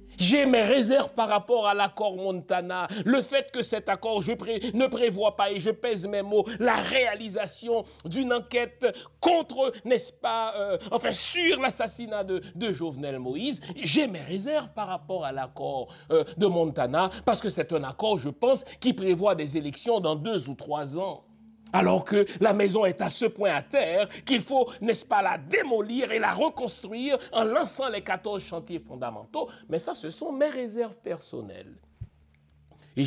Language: French